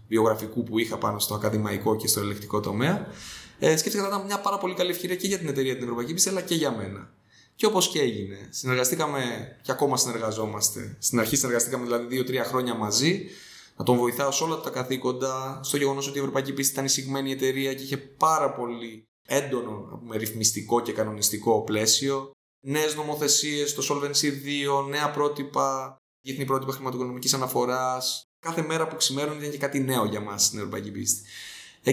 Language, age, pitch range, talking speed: Greek, 20-39, 115-145 Hz, 175 wpm